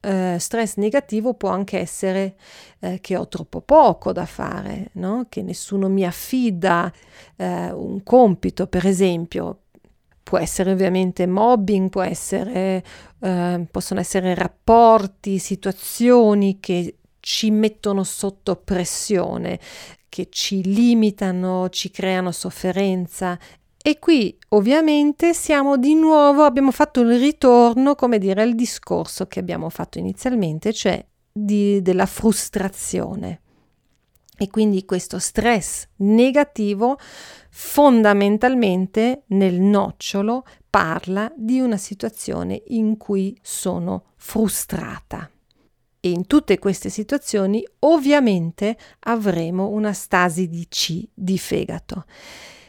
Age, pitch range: 40-59, 185-230 Hz